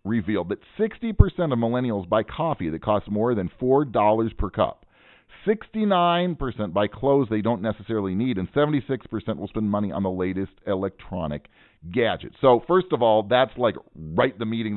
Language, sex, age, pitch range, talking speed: English, male, 40-59, 100-150 Hz, 165 wpm